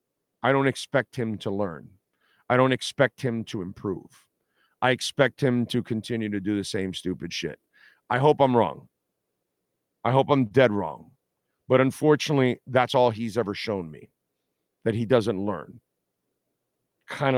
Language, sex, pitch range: English, male, 115-160 Hz